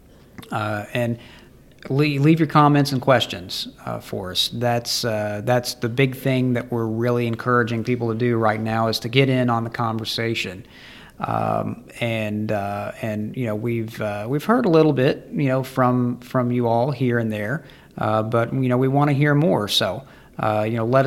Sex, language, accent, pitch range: male, English, American, 115-130 Hz